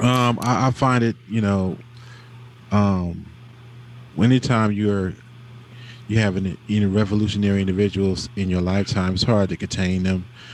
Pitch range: 95-120 Hz